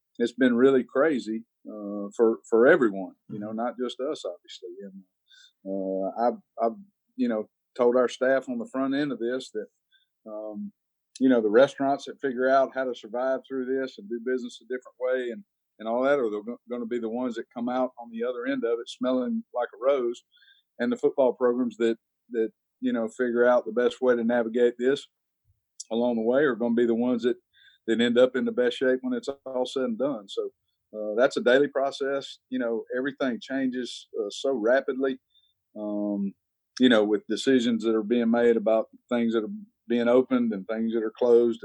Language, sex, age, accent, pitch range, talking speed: English, male, 50-69, American, 115-135 Hz, 205 wpm